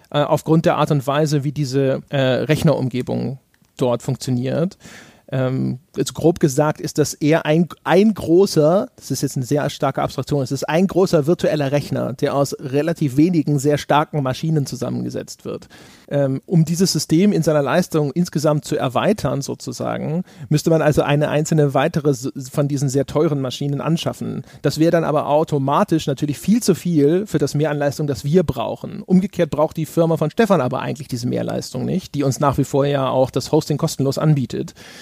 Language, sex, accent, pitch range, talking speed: German, male, German, 140-160 Hz, 175 wpm